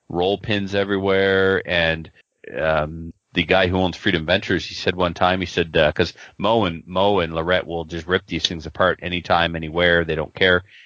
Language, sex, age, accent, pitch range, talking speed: English, male, 30-49, American, 85-100 Hz, 195 wpm